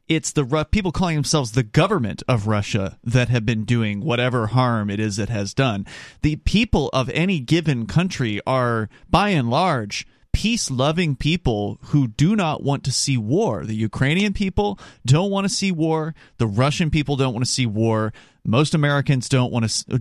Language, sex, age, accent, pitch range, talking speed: English, male, 30-49, American, 125-170 Hz, 180 wpm